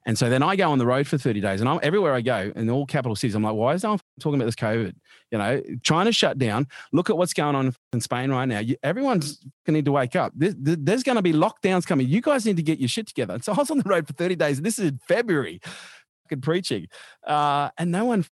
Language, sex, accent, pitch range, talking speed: English, male, Australian, 110-145 Hz, 280 wpm